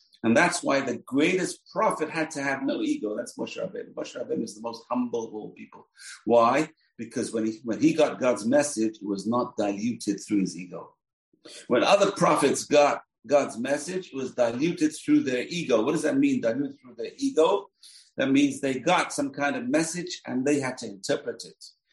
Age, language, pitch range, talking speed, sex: 50-69, English, 120-175 Hz, 195 wpm, male